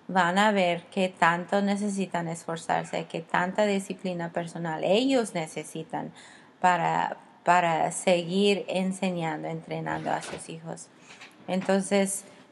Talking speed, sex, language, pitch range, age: 105 wpm, female, English, 180-210 Hz, 30-49